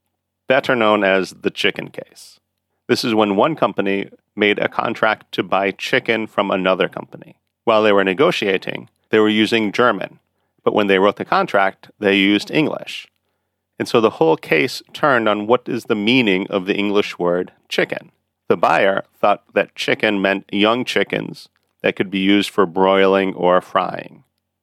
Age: 40-59